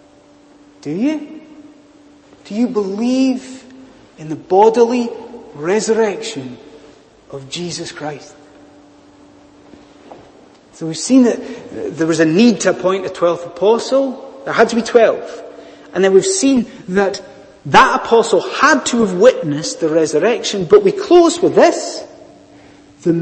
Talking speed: 125 wpm